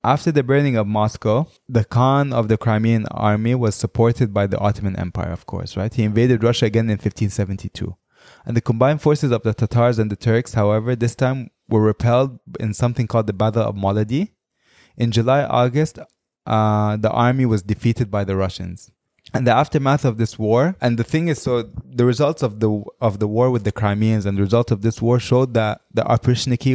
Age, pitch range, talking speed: 20-39, 105-125 Hz, 200 wpm